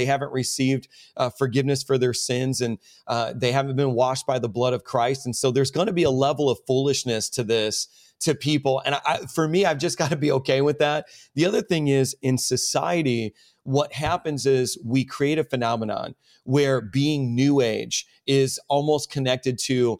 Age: 30-49